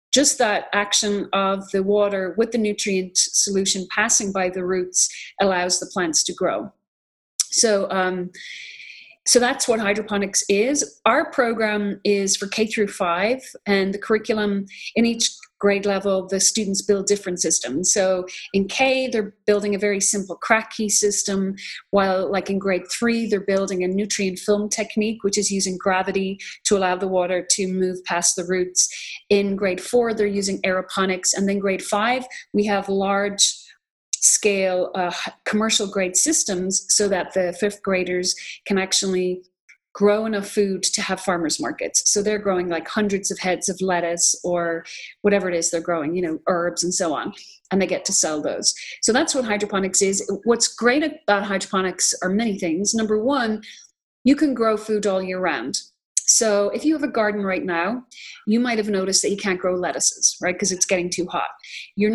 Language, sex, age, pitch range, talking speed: English, female, 30-49, 185-210 Hz, 175 wpm